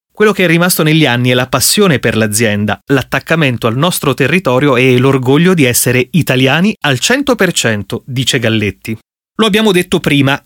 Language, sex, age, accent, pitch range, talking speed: Italian, male, 30-49, native, 125-185 Hz, 160 wpm